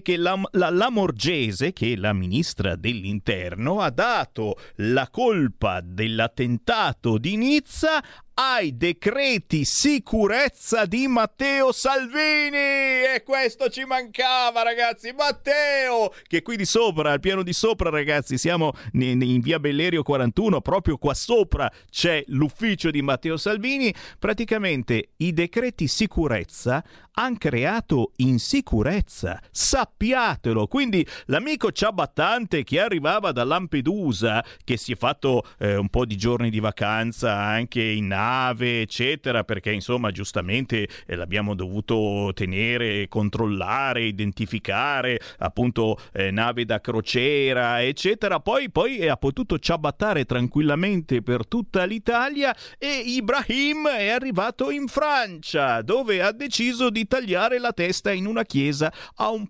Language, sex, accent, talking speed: Italian, male, native, 125 wpm